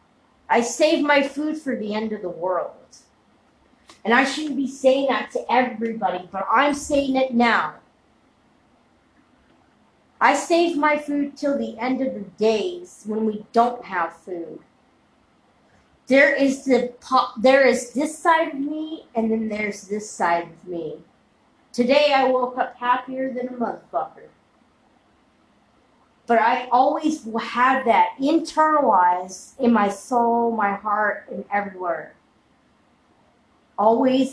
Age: 40-59